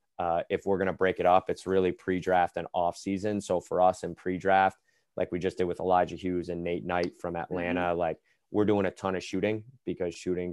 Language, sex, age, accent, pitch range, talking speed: English, male, 20-39, American, 85-95 Hz, 230 wpm